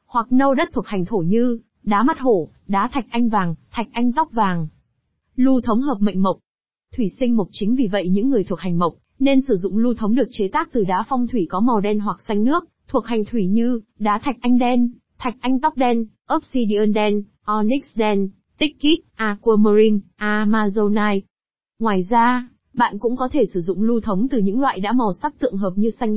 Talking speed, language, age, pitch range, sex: 210 wpm, Vietnamese, 20-39, 205-250 Hz, female